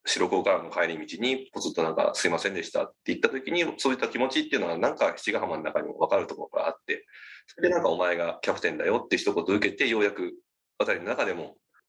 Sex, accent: male, native